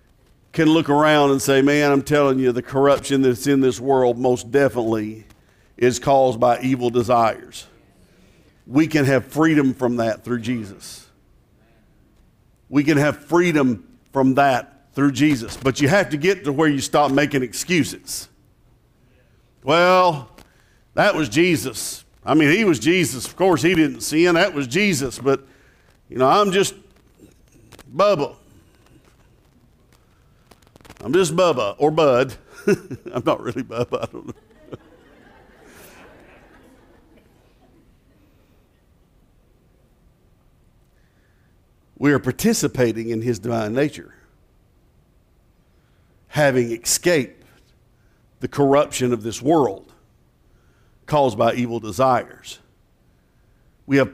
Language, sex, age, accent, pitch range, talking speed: English, male, 50-69, American, 120-145 Hz, 115 wpm